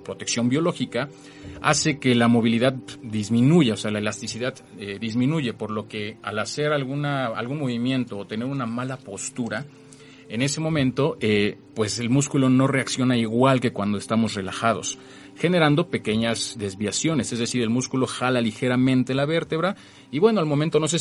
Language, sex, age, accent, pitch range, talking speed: Spanish, male, 40-59, Mexican, 105-140 Hz, 165 wpm